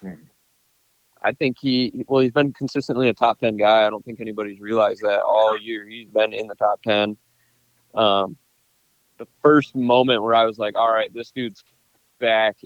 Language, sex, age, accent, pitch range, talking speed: English, male, 20-39, American, 105-120 Hz, 175 wpm